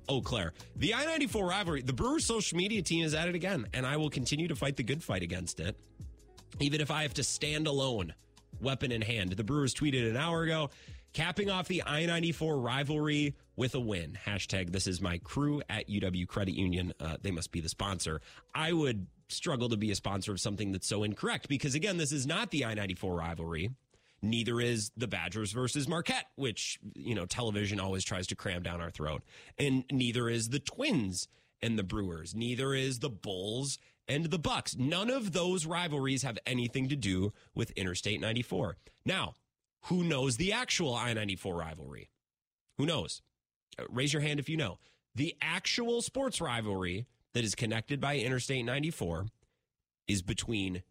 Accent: American